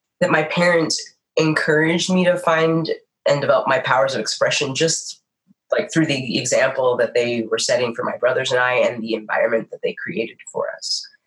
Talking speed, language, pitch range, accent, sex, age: 185 wpm, English, 125-180 Hz, American, female, 20-39